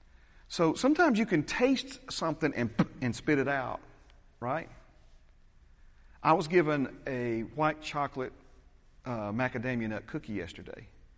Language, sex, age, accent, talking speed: English, male, 40-59, American, 125 wpm